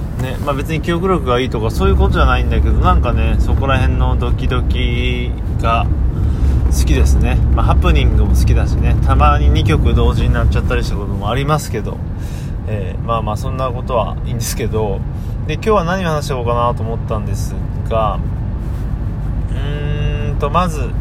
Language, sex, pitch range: Japanese, male, 95-125 Hz